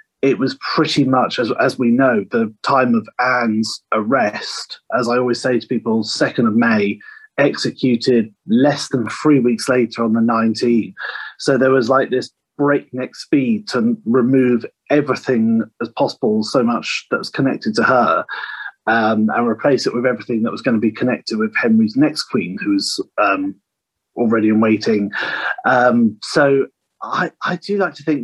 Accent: British